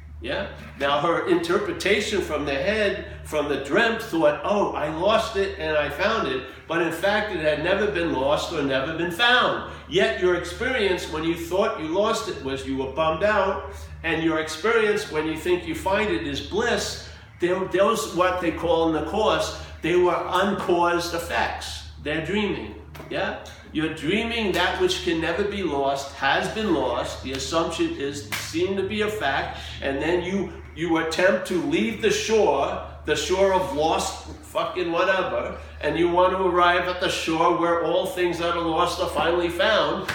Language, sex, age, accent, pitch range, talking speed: English, male, 60-79, American, 135-190 Hz, 180 wpm